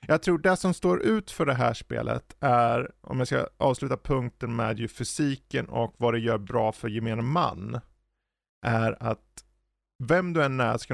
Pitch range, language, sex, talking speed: 115-145 Hz, Swedish, male, 185 wpm